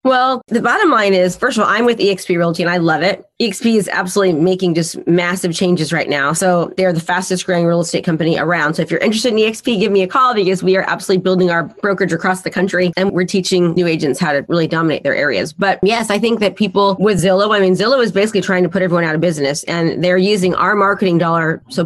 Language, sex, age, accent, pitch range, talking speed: English, female, 30-49, American, 175-205 Hz, 255 wpm